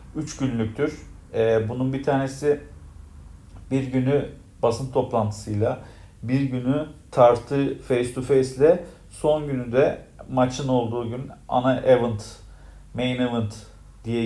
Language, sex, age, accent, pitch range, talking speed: Turkish, male, 40-59, native, 115-155 Hz, 115 wpm